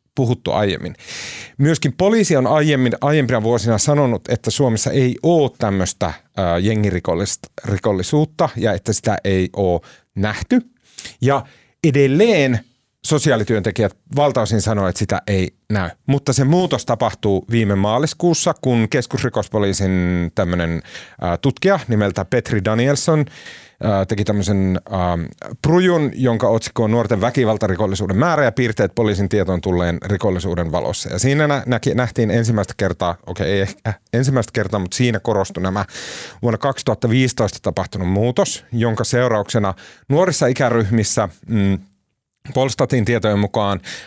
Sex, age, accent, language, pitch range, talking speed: male, 30-49, native, Finnish, 100-135 Hz, 115 wpm